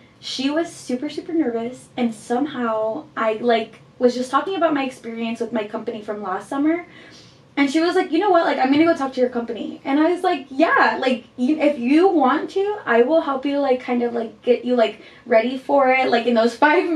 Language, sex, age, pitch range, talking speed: English, female, 20-39, 230-290 Hz, 235 wpm